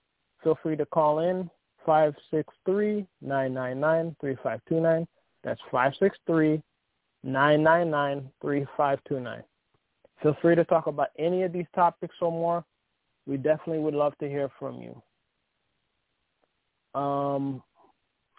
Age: 20-39